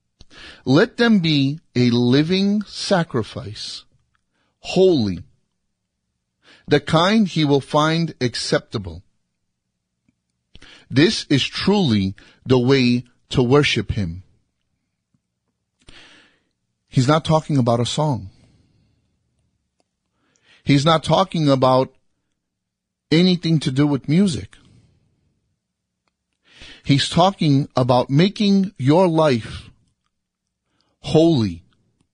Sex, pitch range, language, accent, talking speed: male, 105-160 Hz, English, American, 80 wpm